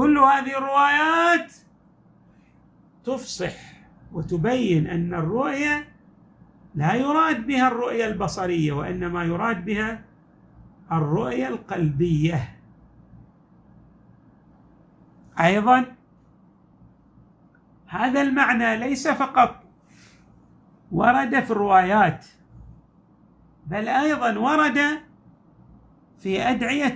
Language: Arabic